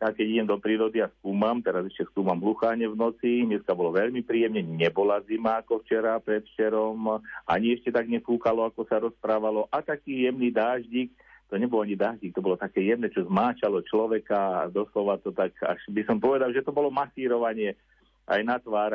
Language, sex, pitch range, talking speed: Slovak, male, 105-120 Hz, 190 wpm